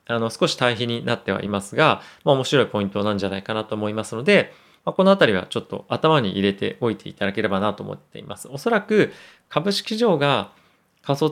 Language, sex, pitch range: Japanese, male, 105-165 Hz